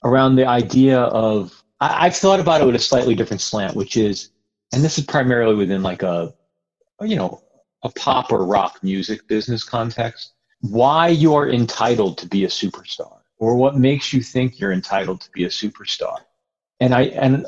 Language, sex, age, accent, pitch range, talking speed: English, male, 40-59, American, 110-155 Hz, 180 wpm